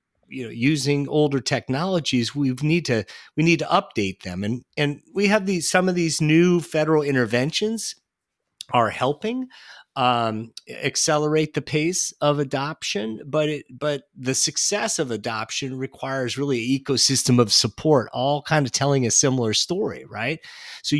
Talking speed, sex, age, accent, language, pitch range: 155 wpm, male, 40-59, American, English, 110-150 Hz